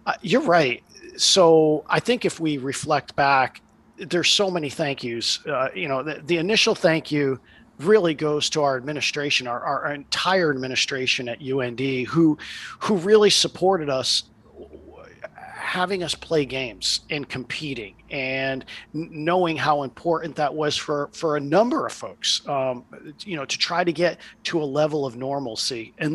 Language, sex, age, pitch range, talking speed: English, male, 40-59, 140-195 Hz, 160 wpm